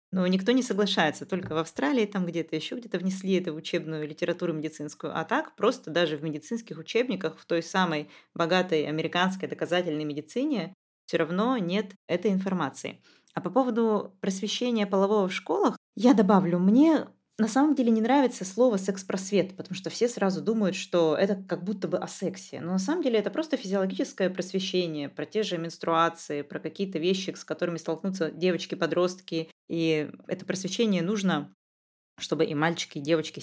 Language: Russian